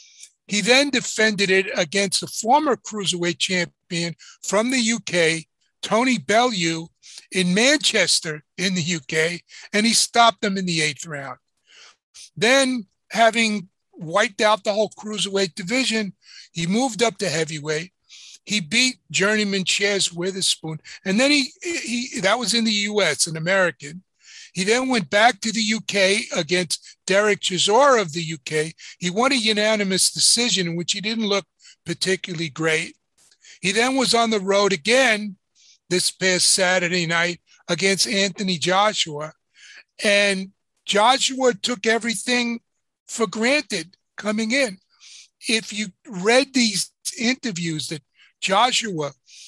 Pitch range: 180-225 Hz